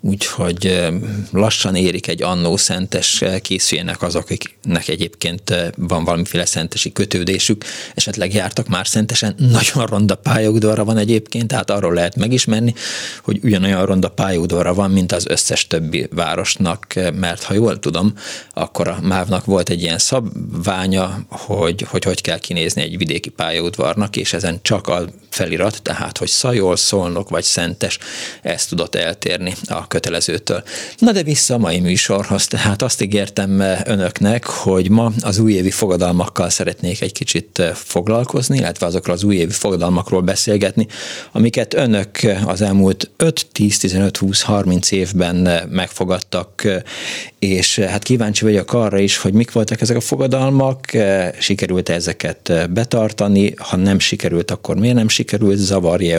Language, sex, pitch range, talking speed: Hungarian, male, 90-110 Hz, 140 wpm